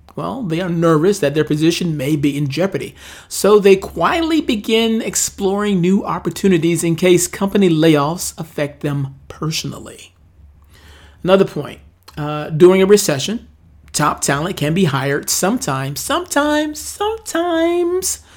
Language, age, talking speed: English, 40-59, 125 wpm